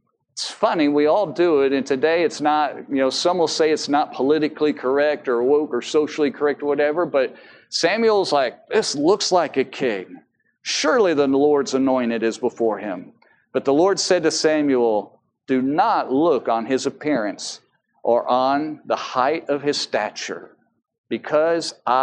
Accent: American